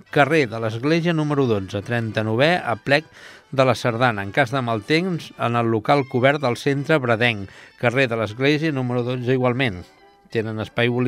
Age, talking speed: 60-79, 190 wpm